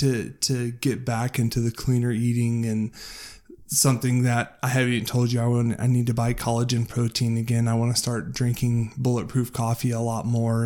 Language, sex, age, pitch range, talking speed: English, male, 20-39, 115-130 Hz, 195 wpm